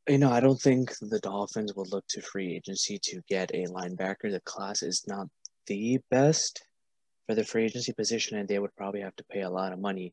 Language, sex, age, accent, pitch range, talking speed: English, male, 20-39, American, 95-120 Hz, 225 wpm